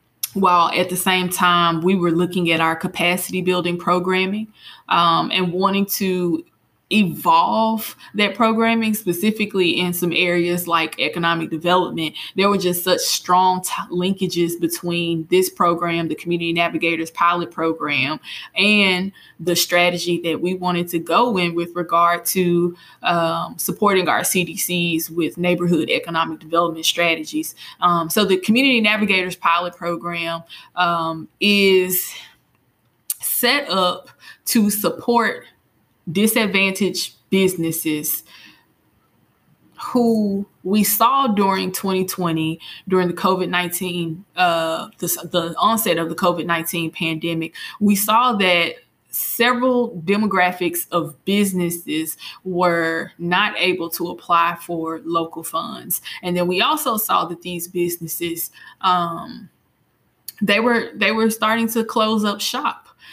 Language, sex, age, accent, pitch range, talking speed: English, female, 20-39, American, 170-200 Hz, 120 wpm